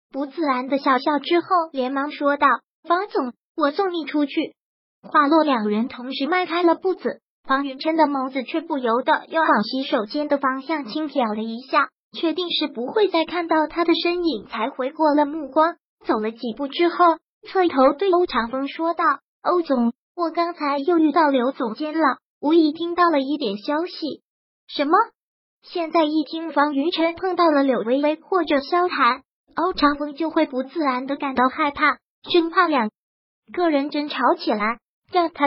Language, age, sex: Chinese, 30-49, male